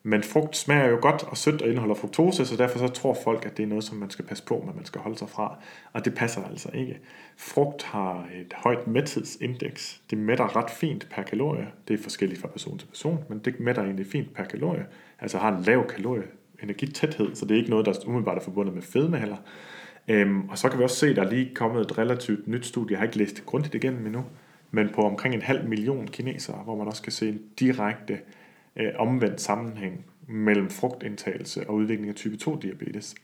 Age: 30-49